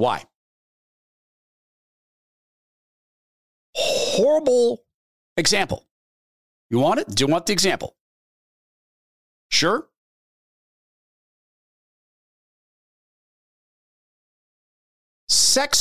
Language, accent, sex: English, American, male